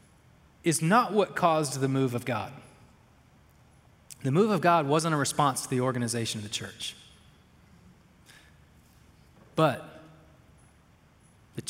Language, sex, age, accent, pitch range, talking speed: English, male, 20-39, American, 145-190 Hz, 120 wpm